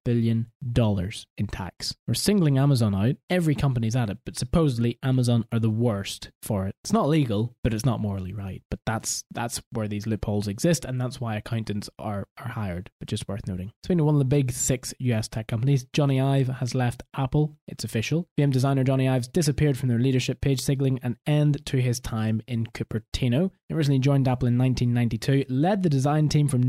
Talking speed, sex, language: 205 wpm, male, English